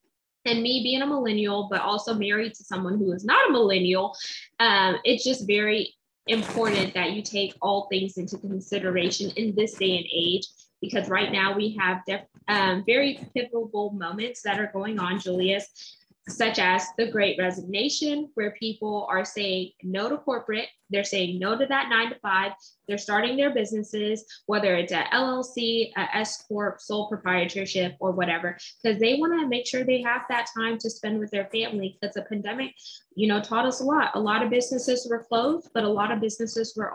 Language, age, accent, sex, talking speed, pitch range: English, 10-29, American, female, 190 wpm, 195-235 Hz